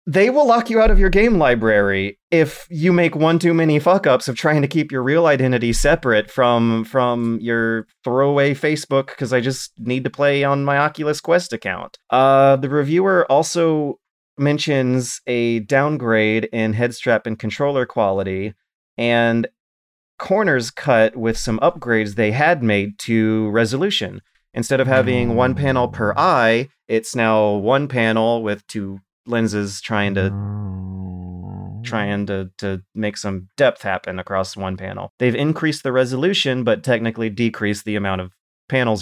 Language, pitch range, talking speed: English, 105-135 Hz, 155 wpm